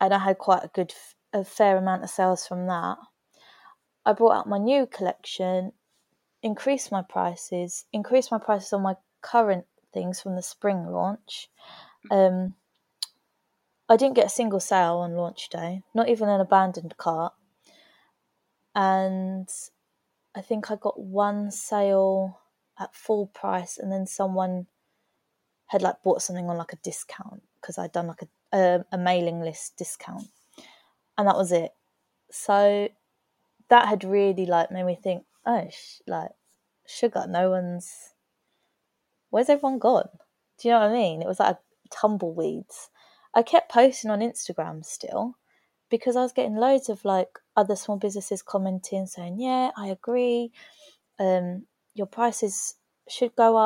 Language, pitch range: English, 185-230 Hz